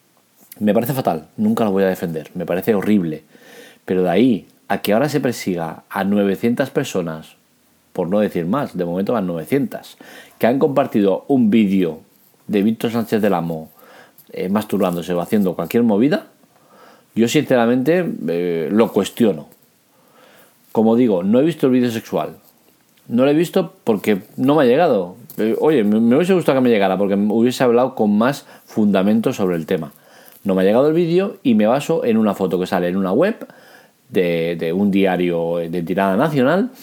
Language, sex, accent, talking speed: Spanish, male, Spanish, 180 wpm